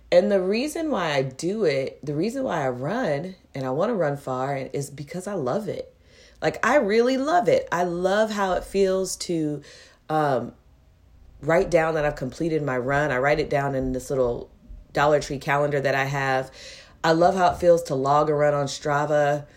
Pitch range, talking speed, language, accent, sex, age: 140-180 Hz, 200 wpm, English, American, female, 30-49